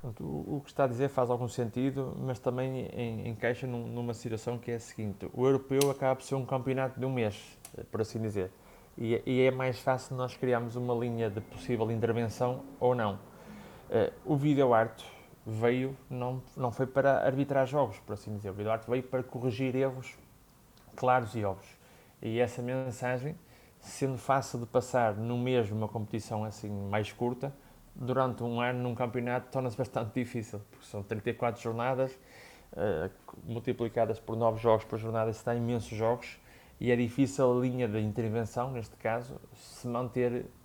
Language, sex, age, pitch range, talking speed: Portuguese, male, 20-39, 115-130 Hz, 170 wpm